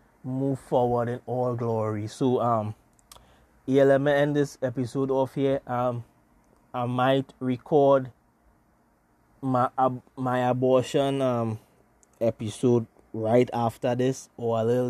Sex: male